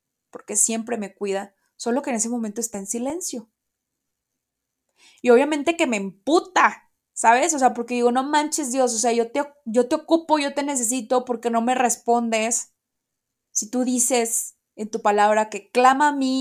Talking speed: 175 wpm